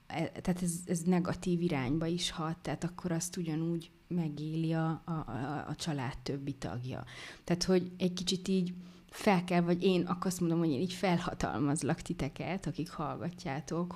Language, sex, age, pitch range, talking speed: Hungarian, female, 20-39, 155-180 Hz, 165 wpm